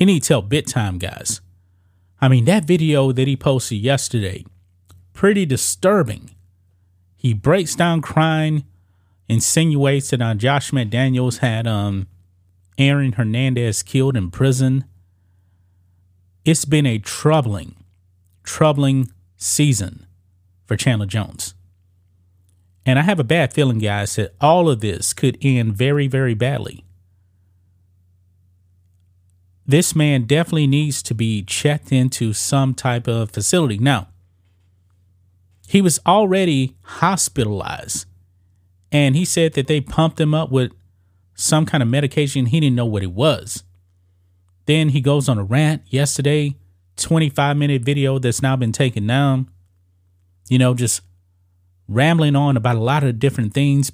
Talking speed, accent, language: 130 wpm, American, English